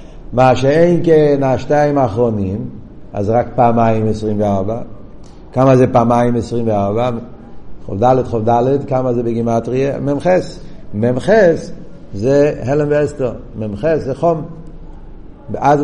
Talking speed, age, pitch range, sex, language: 100 wpm, 60-79, 120-145 Hz, male, Hebrew